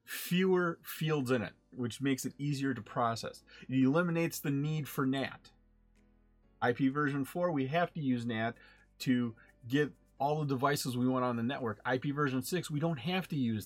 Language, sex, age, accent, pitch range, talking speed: English, male, 30-49, American, 125-150 Hz, 185 wpm